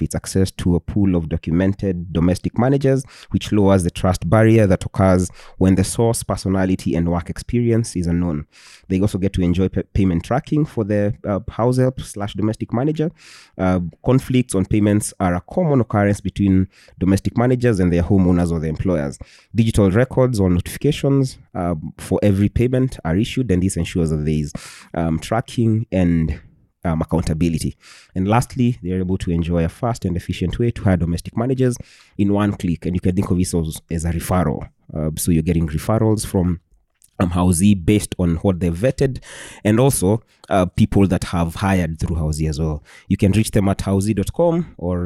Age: 30-49